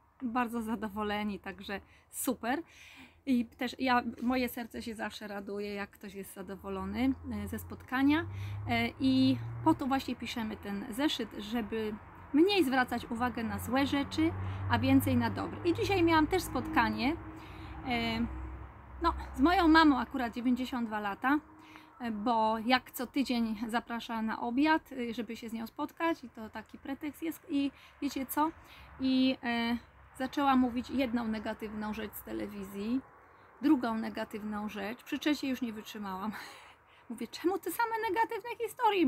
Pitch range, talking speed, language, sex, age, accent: 215-285 Hz, 140 wpm, Polish, female, 20-39, native